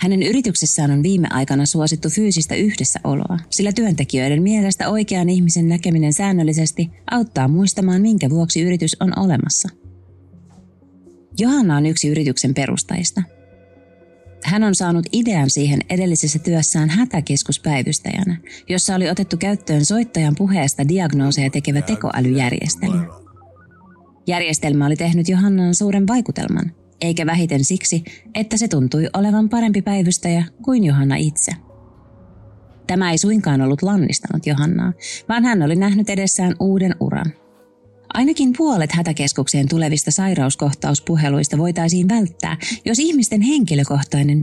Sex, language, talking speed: female, Finnish, 115 wpm